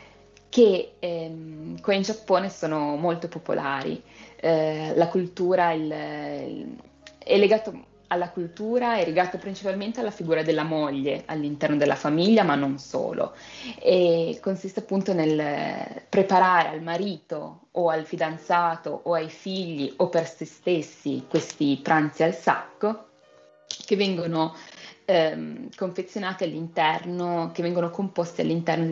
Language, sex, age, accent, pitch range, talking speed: Italian, female, 20-39, native, 155-185 Hz, 125 wpm